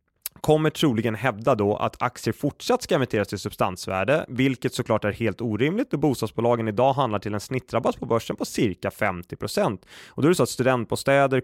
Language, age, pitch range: Swedish, 20-39, 105-135 Hz